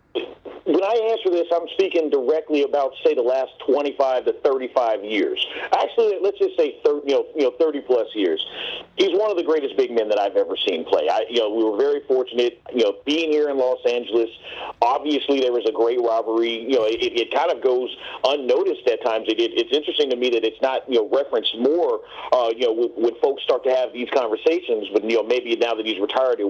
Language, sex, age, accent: English, male, 40-59, American